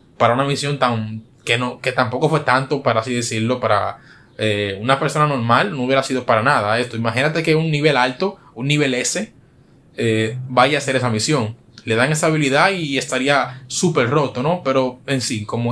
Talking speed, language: 195 wpm, Spanish